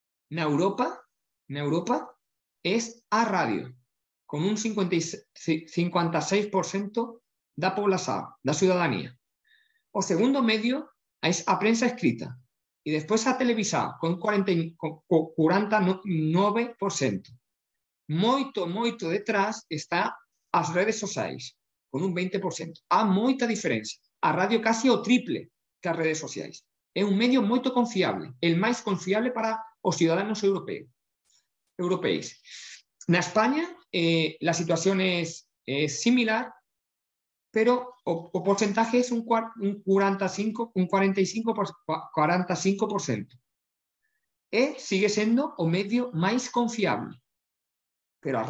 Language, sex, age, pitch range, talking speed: Portuguese, male, 50-69, 160-225 Hz, 115 wpm